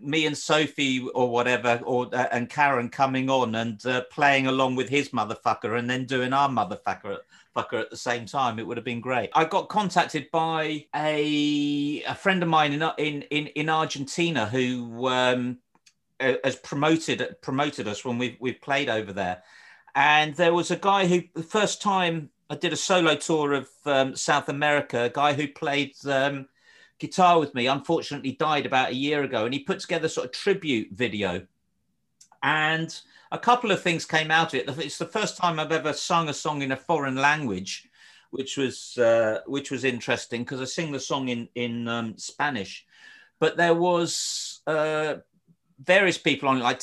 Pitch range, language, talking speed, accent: 125-160 Hz, English, 185 wpm, British